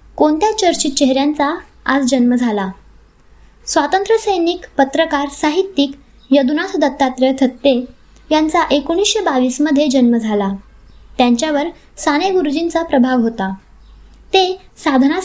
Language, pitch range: Marathi, 250-325 Hz